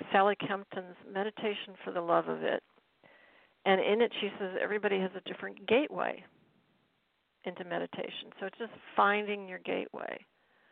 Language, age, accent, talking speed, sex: English, 50-69, American, 145 wpm, female